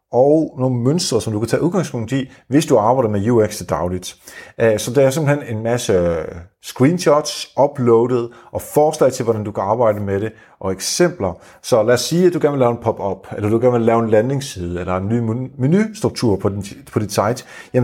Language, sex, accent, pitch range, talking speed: Danish, male, native, 115-160 Hz, 200 wpm